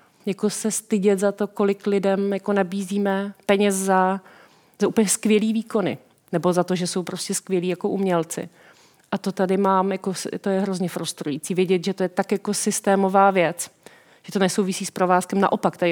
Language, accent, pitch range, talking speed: Czech, native, 185-205 Hz, 180 wpm